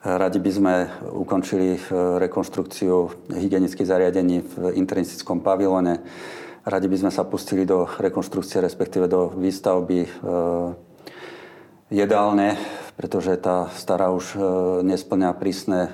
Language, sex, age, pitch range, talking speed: Slovak, male, 40-59, 90-95 Hz, 100 wpm